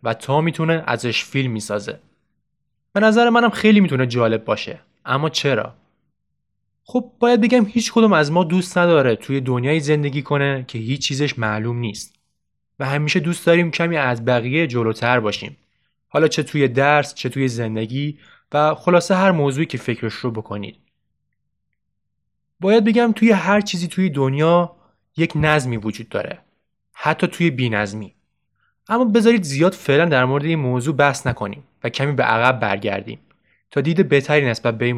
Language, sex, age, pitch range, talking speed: Persian, male, 20-39, 120-175 Hz, 160 wpm